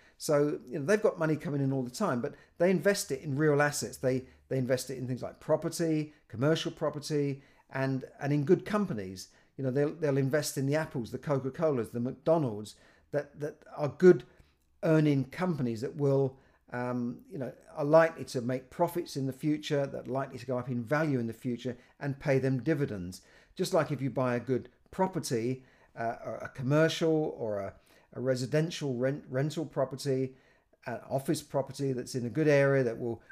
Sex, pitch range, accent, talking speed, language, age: male, 125-155 Hz, British, 195 wpm, English, 50-69